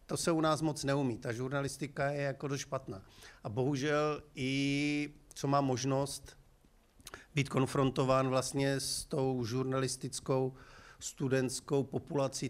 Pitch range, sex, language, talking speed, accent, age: 120-135 Hz, male, Czech, 125 wpm, native, 50-69